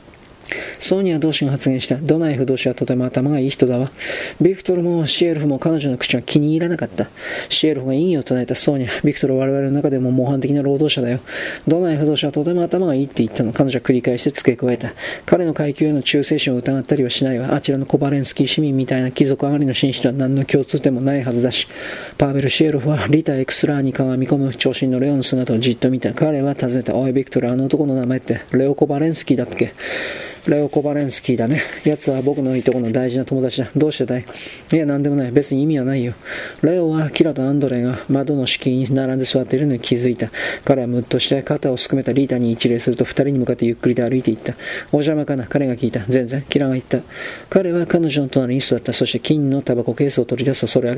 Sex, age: male, 40-59